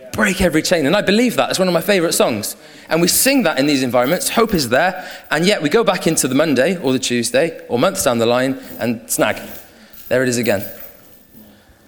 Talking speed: 225 wpm